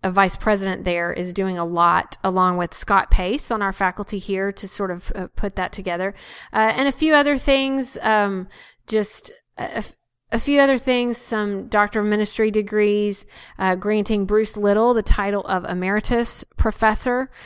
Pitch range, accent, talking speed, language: 185-220 Hz, American, 170 wpm, English